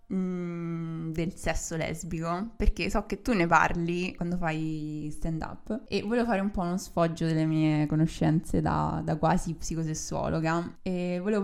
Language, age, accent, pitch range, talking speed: Italian, 20-39, native, 160-195 Hz, 150 wpm